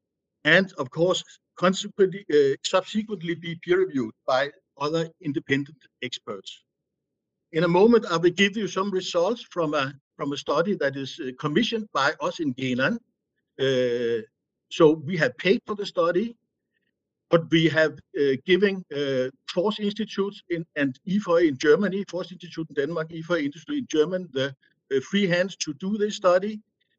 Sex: male